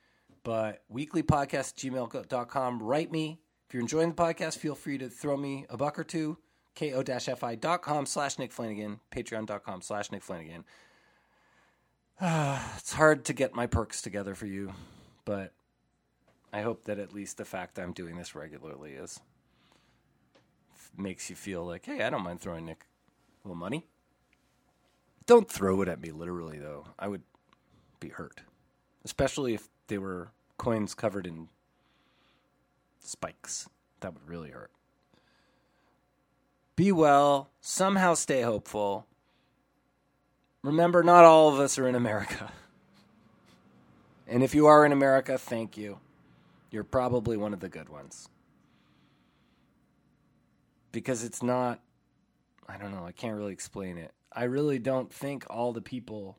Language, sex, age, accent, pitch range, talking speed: English, male, 30-49, American, 100-140 Hz, 140 wpm